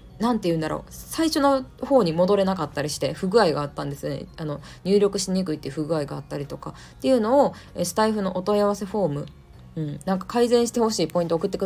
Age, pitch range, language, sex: 20-39, 150-205 Hz, Japanese, female